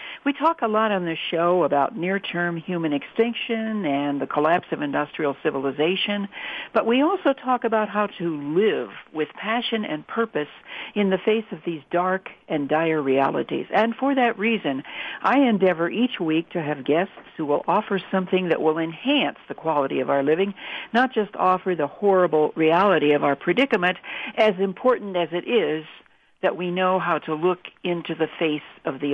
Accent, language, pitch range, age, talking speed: American, English, 160-225 Hz, 60-79, 175 wpm